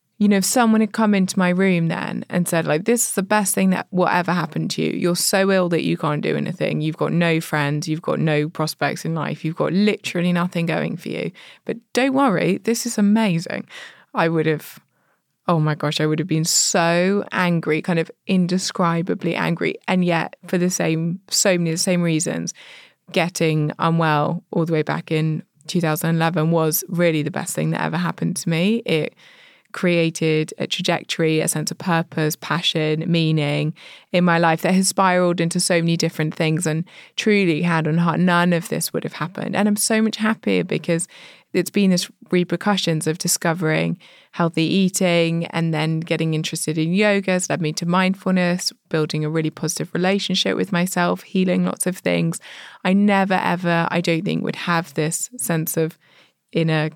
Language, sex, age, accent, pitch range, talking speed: English, female, 20-39, British, 160-185 Hz, 185 wpm